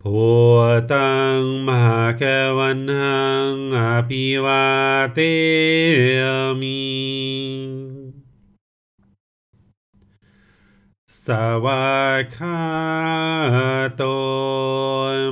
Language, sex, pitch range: English, male, 125-135 Hz